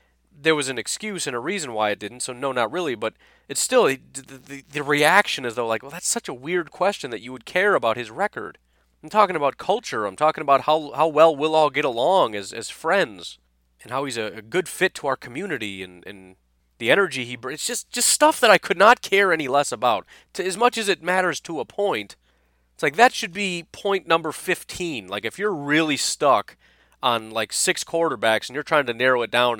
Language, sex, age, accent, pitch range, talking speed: English, male, 30-49, American, 120-185 Hz, 235 wpm